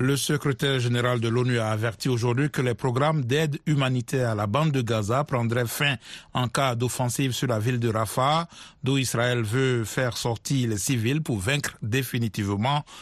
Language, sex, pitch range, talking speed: French, male, 115-140 Hz, 175 wpm